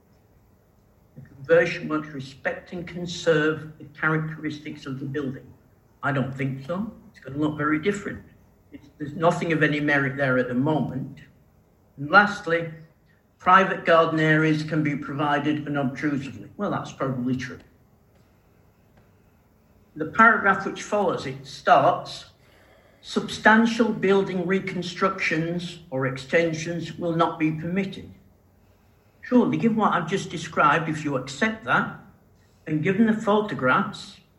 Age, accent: 60-79, British